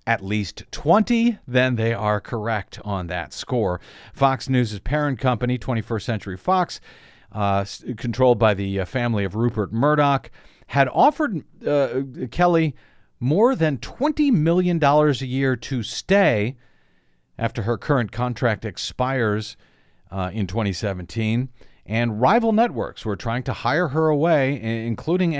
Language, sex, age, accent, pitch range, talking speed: English, male, 50-69, American, 105-135 Hz, 130 wpm